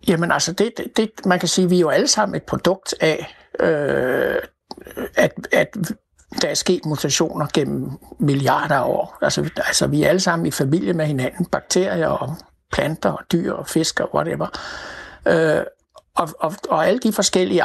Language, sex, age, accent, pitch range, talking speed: Danish, male, 60-79, native, 155-195 Hz, 175 wpm